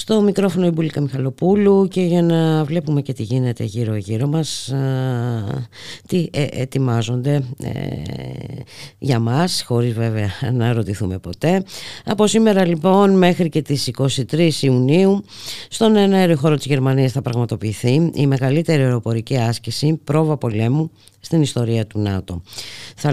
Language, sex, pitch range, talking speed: Greek, female, 105-145 Hz, 120 wpm